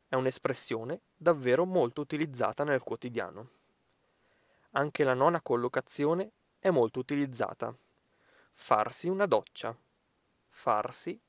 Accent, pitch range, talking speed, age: native, 125-175 Hz, 95 wpm, 20-39